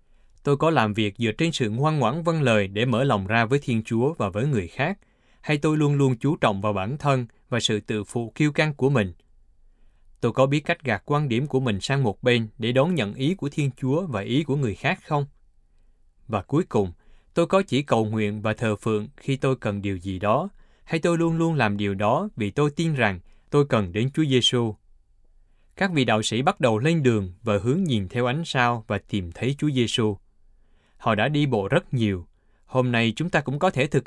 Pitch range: 105-140 Hz